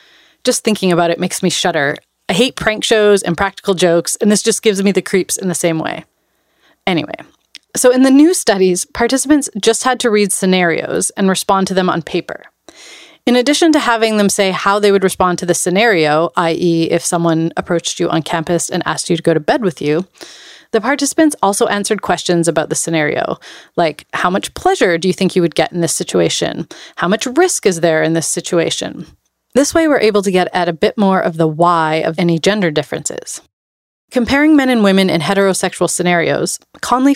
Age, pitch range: 30-49, 175-220 Hz